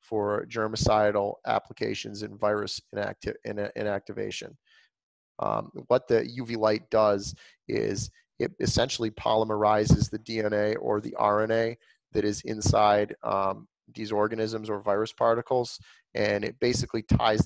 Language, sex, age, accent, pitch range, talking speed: English, male, 30-49, American, 105-115 Hz, 115 wpm